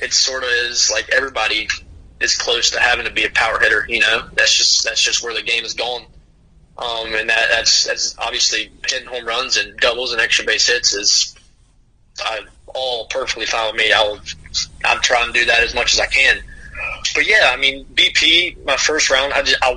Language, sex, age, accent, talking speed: English, male, 20-39, American, 210 wpm